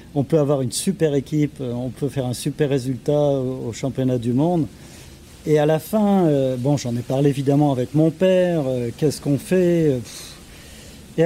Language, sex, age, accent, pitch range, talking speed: French, male, 40-59, French, 120-150 Hz, 170 wpm